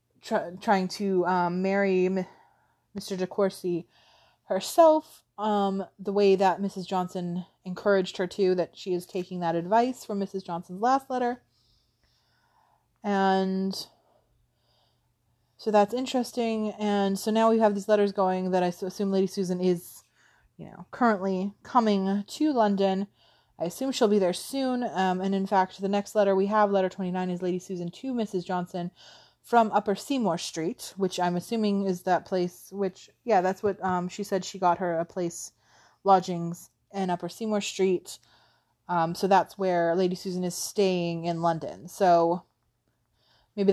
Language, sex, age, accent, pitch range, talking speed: English, female, 20-39, American, 180-205 Hz, 155 wpm